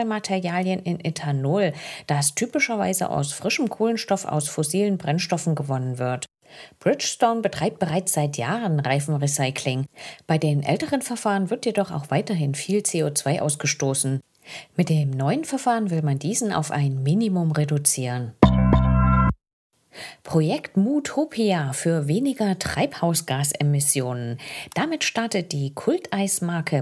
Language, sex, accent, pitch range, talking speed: English, female, German, 145-205 Hz, 110 wpm